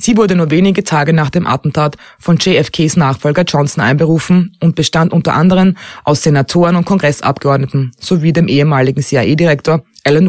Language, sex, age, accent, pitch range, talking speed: German, female, 20-39, German, 140-180 Hz, 150 wpm